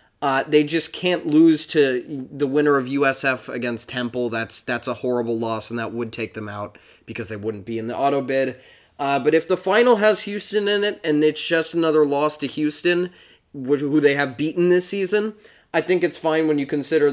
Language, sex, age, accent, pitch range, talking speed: English, male, 20-39, American, 125-155 Hz, 210 wpm